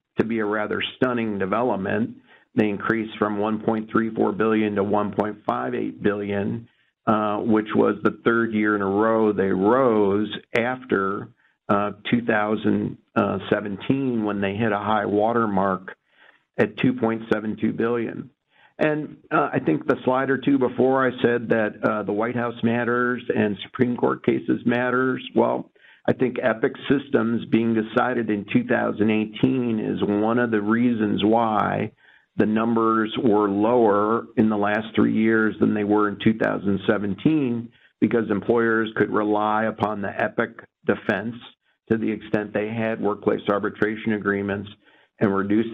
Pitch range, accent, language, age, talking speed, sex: 105-115 Hz, American, English, 50-69, 140 wpm, male